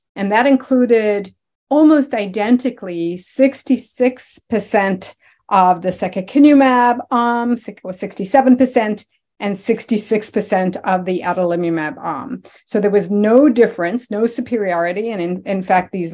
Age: 40-59